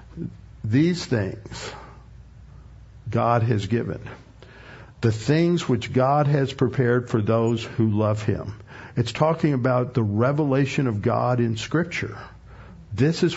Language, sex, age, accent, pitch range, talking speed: English, male, 50-69, American, 115-140 Hz, 120 wpm